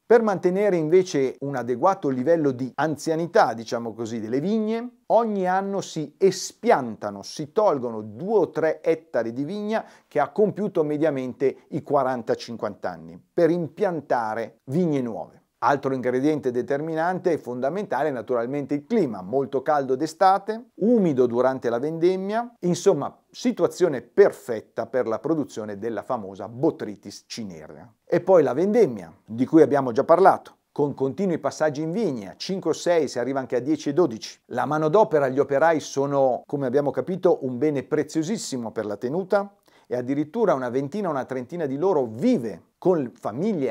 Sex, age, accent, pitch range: male, 40-59, native, 130-185 Hz